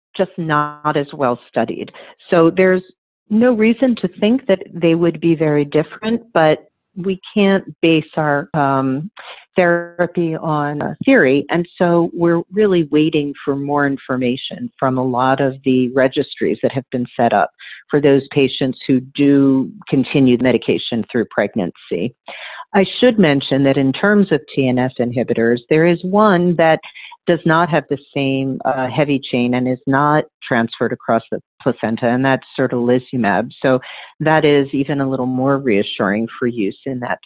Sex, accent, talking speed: female, American, 160 wpm